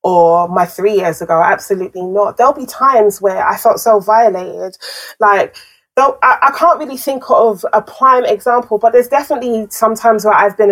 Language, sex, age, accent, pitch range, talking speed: English, female, 20-39, British, 195-225 Hz, 190 wpm